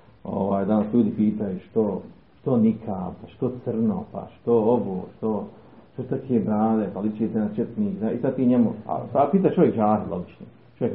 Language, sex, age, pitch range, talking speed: Croatian, male, 50-69, 110-180 Hz, 165 wpm